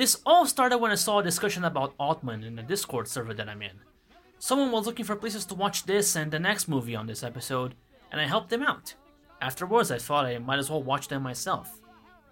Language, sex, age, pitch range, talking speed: English, male, 20-39, 120-190 Hz, 230 wpm